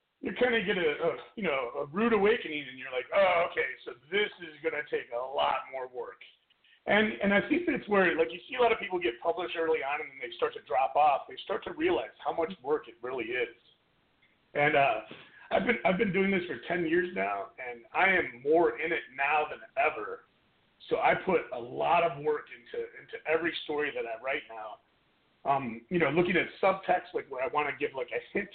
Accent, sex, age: American, male, 40-59